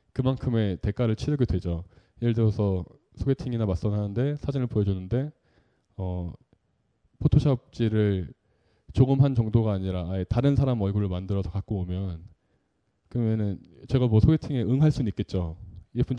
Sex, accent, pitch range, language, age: male, native, 100-130 Hz, Korean, 20-39